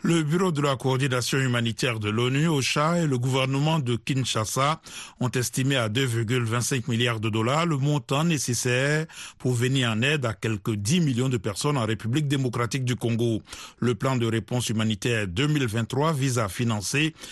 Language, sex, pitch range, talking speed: French, male, 115-145 Hz, 165 wpm